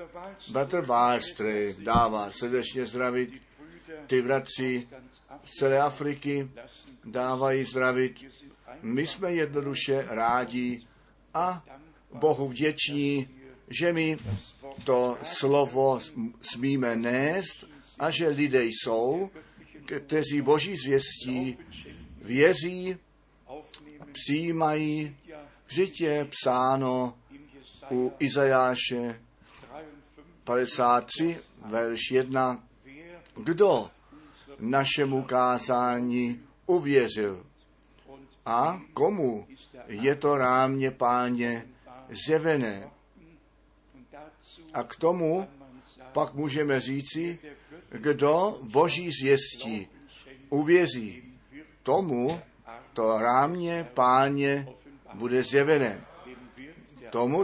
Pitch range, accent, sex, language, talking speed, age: 125-150 Hz, native, male, Czech, 75 wpm, 50-69